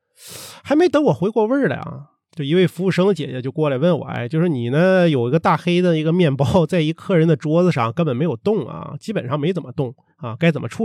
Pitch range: 140-185 Hz